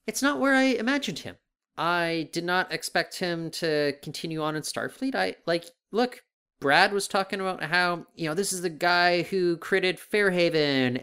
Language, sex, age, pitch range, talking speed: English, male, 30-49, 140-215 Hz, 180 wpm